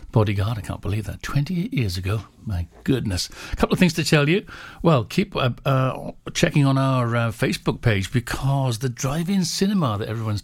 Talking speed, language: 190 wpm, English